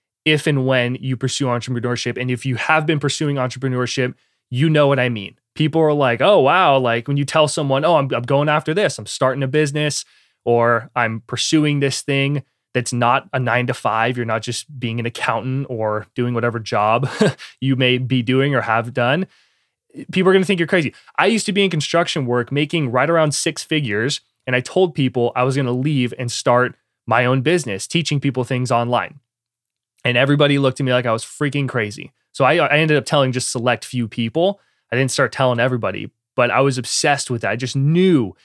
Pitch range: 120-145 Hz